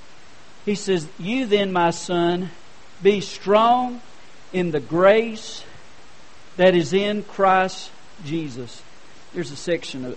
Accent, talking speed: American, 120 wpm